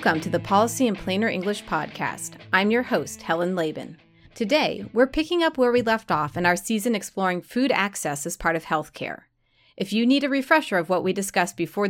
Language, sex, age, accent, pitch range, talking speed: English, female, 30-49, American, 175-255 Hz, 205 wpm